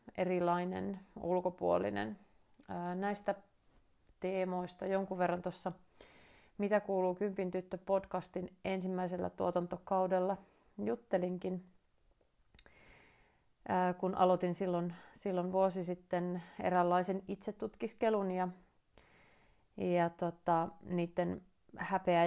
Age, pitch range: 30-49, 170-190 Hz